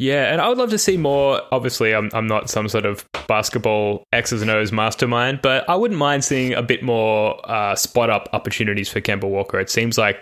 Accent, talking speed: Australian, 225 wpm